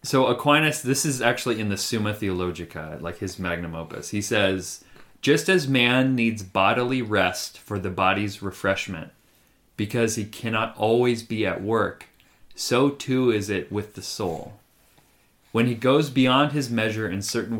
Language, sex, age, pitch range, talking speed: English, male, 30-49, 95-125 Hz, 160 wpm